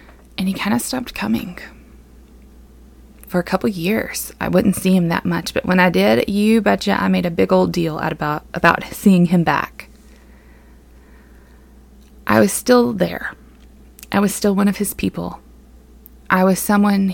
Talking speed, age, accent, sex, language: 170 wpm, 20-39, American, female, English